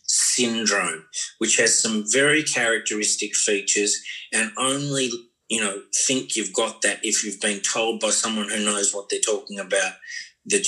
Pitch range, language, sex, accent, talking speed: 110-145 Hz, English, male, Australian, 155 wpm